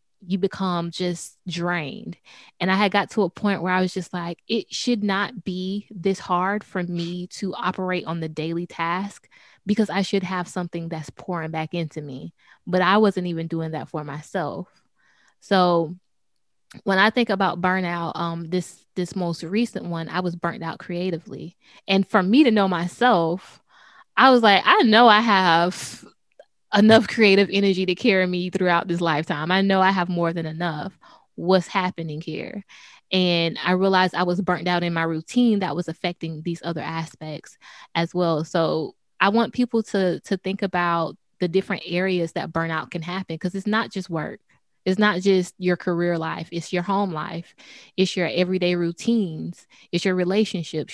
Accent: American